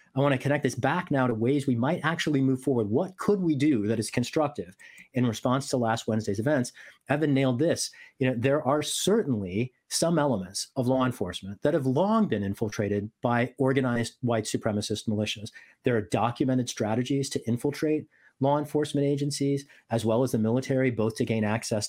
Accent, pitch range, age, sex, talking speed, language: American, 115-145 Hz, 40-59, male, 185 wpm, English